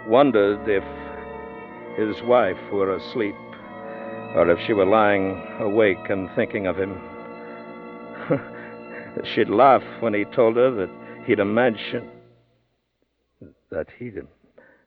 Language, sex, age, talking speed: English, male, 60-79, 110 wpm